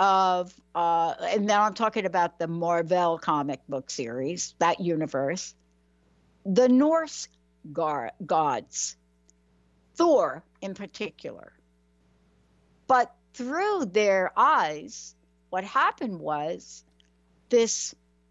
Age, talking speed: 60-79, 90 wpm